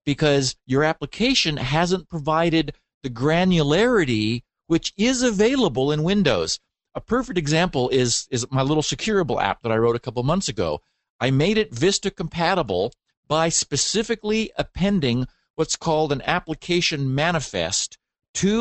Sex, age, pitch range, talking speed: male, 50-69, 125-175 Hz, 135 wpm